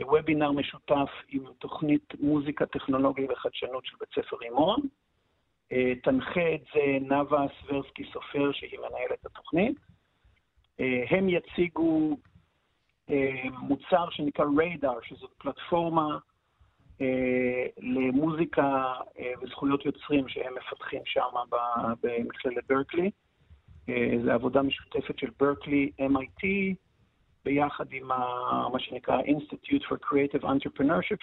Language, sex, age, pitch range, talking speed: Hebrew, male, 50-69, 130-170 Hz, 95 wpm